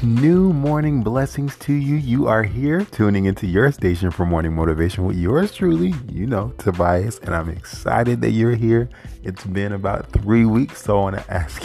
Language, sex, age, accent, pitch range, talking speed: English, male, 30-49, American, 80-115 Hz, 190 wpm